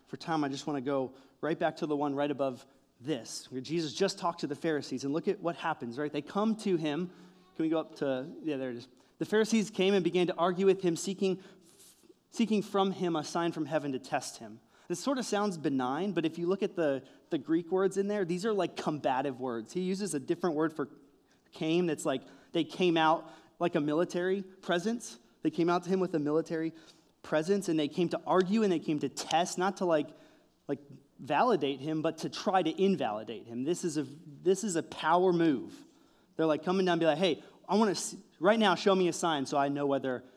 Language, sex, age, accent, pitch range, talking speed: English, male, 20-39, American, 140-185 Hz, 235 wpm